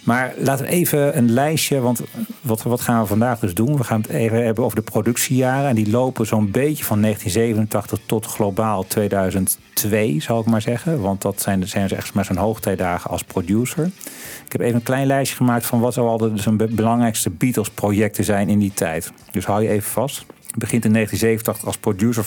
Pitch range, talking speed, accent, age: 100-120 Hz, 215 wpm, Dutch, 40-59